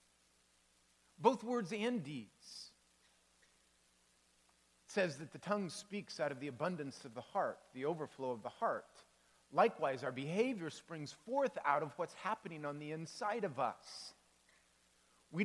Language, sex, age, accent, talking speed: English, male, 40-59, American, 145 wpm